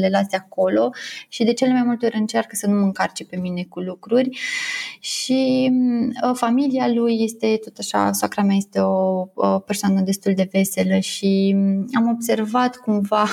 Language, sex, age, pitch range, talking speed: Romanian, female, 20-39, 195-240 Hz, 160 wpm